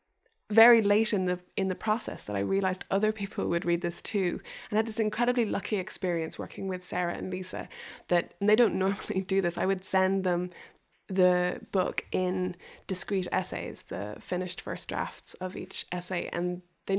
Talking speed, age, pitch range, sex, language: 180 wpm, 20-39, 175-210 Hz, female, English